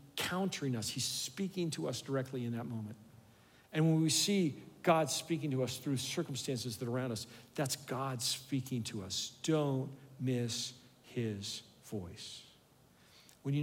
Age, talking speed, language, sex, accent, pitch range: 50-69, 155 wpm, English, male, American, 115-145 Hz